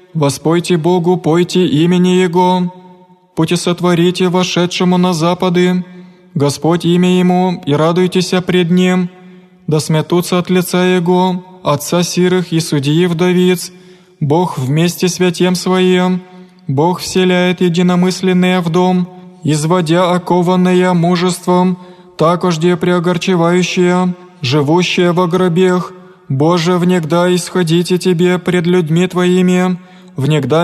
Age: 20-39